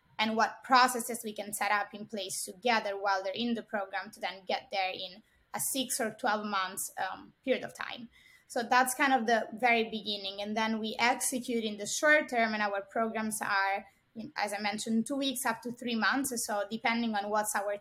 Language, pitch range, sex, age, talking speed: English, 210-250 Hz, female, 20-39, 210 wpm